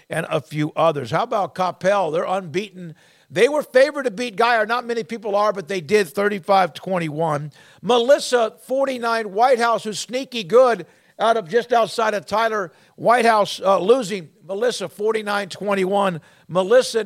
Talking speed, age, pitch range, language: 155 wpm, 50-69, 175-225 Hz, English